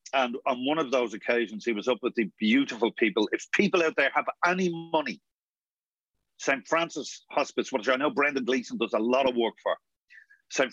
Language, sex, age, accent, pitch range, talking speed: English, male, 40-59, Irish, 100-135 Hz, 195 wpm